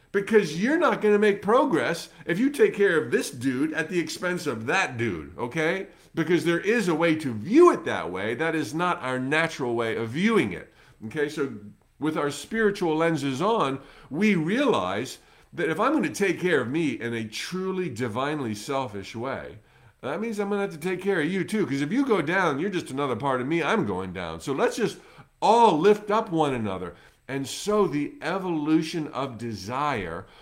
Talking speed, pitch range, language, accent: 205 wpm, 135-200 Hz, English, American